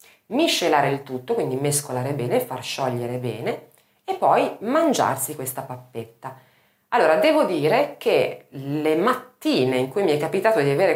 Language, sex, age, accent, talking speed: Italian, female, 30-49, native, 150 wpm